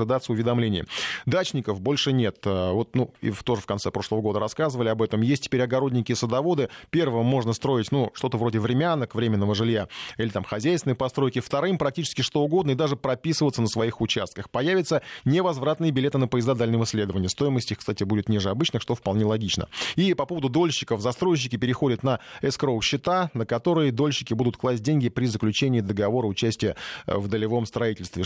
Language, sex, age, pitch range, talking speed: Russian, male, 20-39, 110-140 Hz, 175 wpm